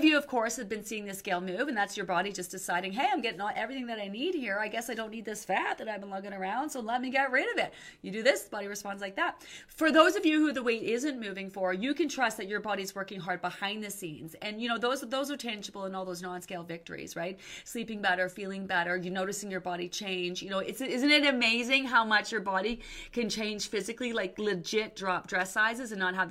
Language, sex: English, female